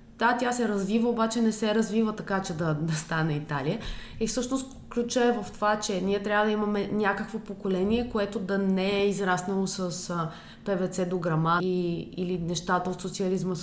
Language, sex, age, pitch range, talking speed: Bulgarian, female, 20-39, 165-210 Hz, 175 wpm